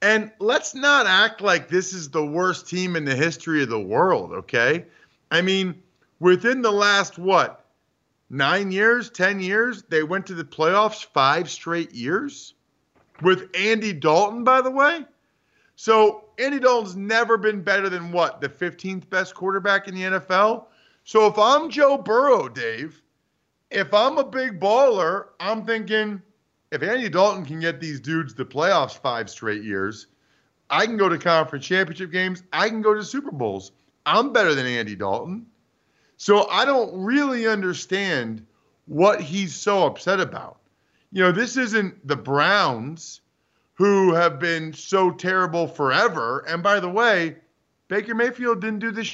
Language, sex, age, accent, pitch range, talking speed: English, male, 40-59, American, 165-225 Hz, 160 wpm